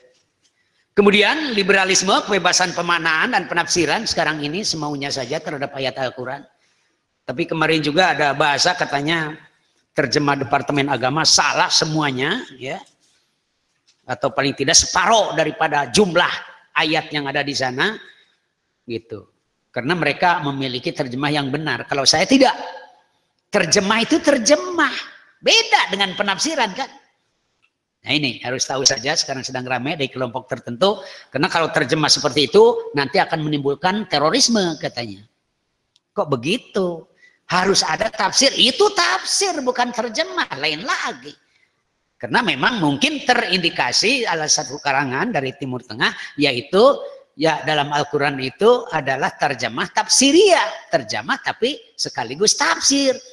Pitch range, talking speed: 145-210 Hz, 120 wpm